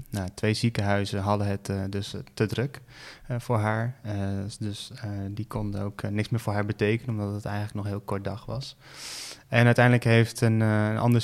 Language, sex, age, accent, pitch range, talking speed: Dutch, male, 20-39, Dutch, 100-115 Hz, 215 wpm